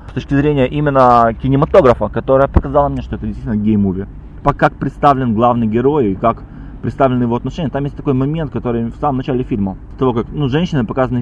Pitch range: 115-145 Hz